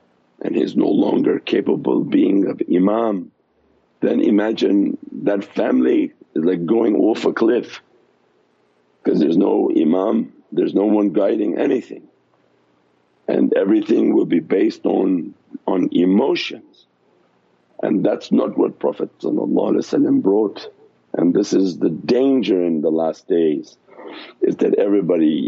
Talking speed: 125 wpm